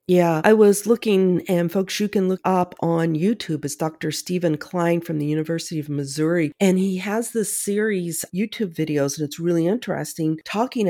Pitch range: 155-210 Hz